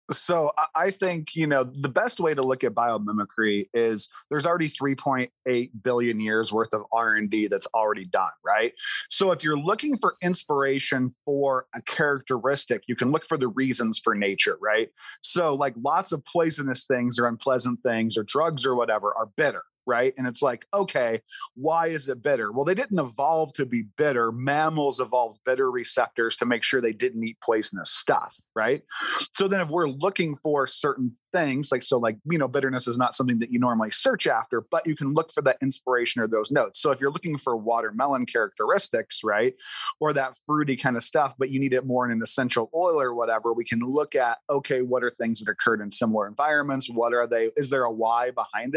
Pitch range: 115-150 Hz